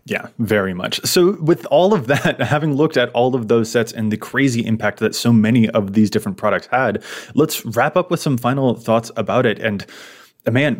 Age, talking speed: 20-39, 210 wpm